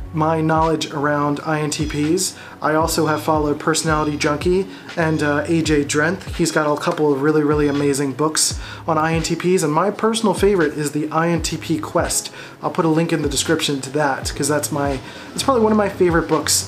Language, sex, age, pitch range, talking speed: English, male, 30-49, 145-170 Hz, 185 wpm